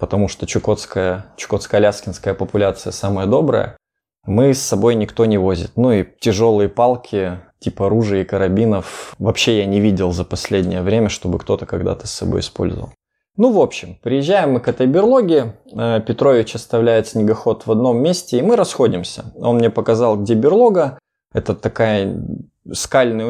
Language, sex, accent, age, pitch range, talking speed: Russian, male, native, 20-39, 100-120 Hz, 150 wpm